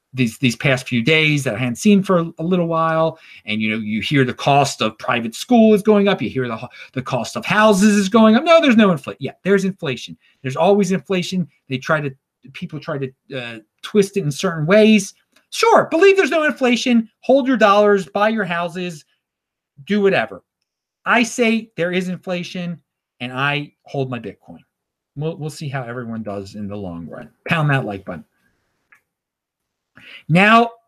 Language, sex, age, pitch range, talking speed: English, male, 30-49, 135-210 Hz, 185 wpm